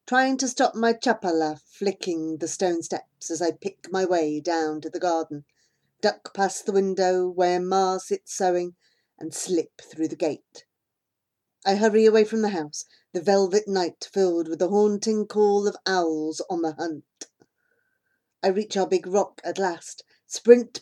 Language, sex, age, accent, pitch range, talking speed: English, female, 40-59, British, 165-215 Hz, 165 wpm